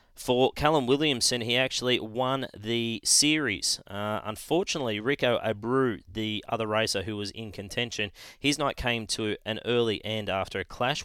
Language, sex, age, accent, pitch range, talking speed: English, male, 20-39, Australian, 95-115 Hz, 155 wpm